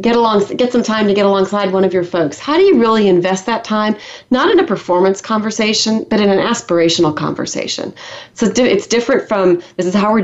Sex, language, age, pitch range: female, English, 30-49, 180-235 Hz